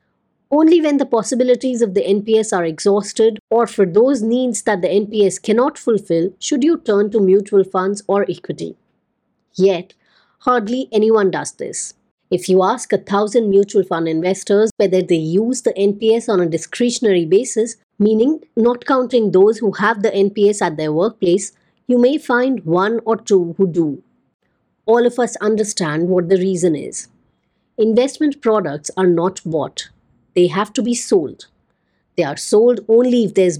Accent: Indian